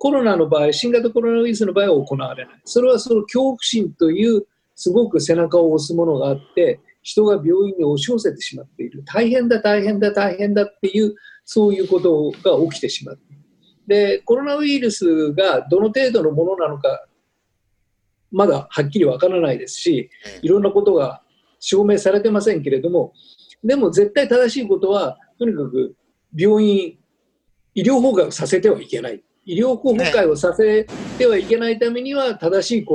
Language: Japanese